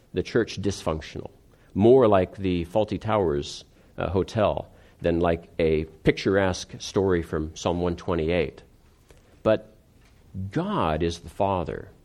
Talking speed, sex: 115 wpm, male